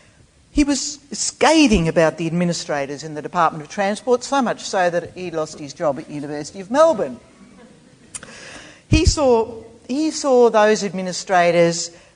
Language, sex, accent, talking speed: English, female, Australian, 145 wpm